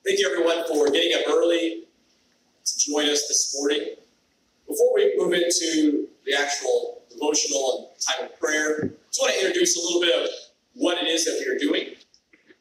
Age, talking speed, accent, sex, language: 30-49, 185 wpm, American, male, English